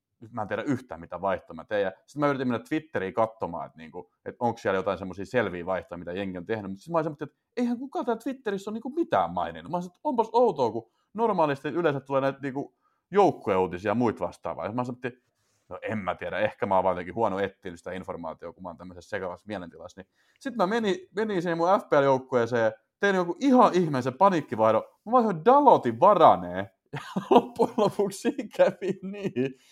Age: 30-49